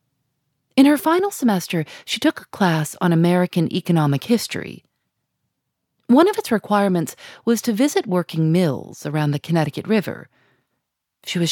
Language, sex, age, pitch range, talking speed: English, female, 30-49, 150-215 Hz, 140 wpm